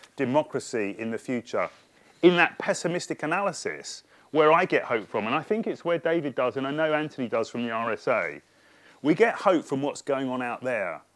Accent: British